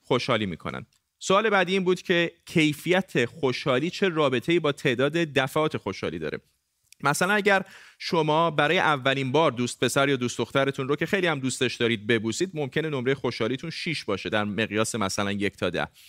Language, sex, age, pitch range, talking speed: Persian, male, 30-49, 120-155 Hz, 170 wpm